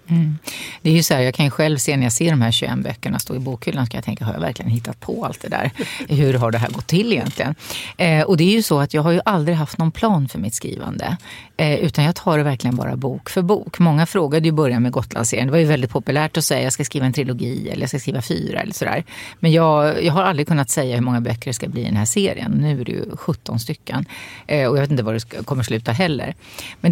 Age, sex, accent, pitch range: 30-49, female, native, 140-190 Hz